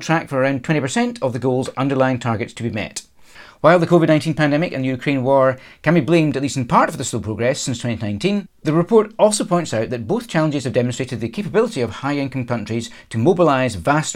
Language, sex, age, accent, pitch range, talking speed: English, male, 40-59, British, 115-155 Hz, 215 wpm